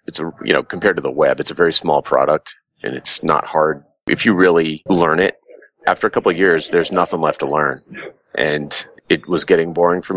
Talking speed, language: 225 wpm, English